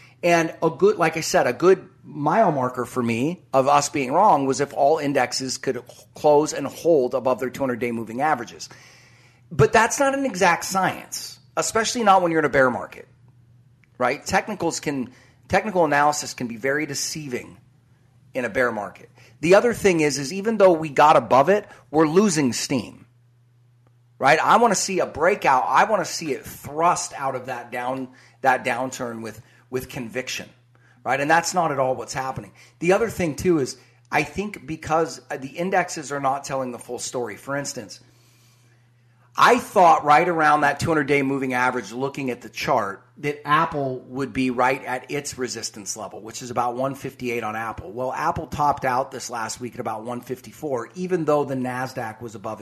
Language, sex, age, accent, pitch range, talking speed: English, male, 40-59, American, 125-155 Hz, 185 wpm